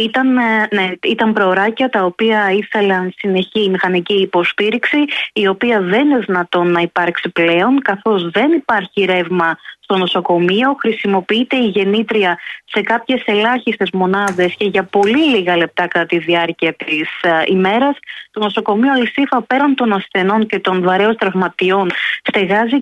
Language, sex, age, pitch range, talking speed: Greek, female, 20-39, 190-235 Hz, 140 wpm